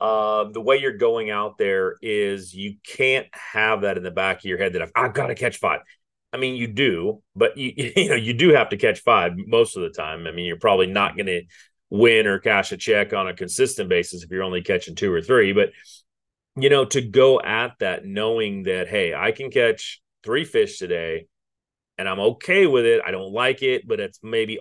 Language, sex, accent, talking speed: English, male, American, 230 wpm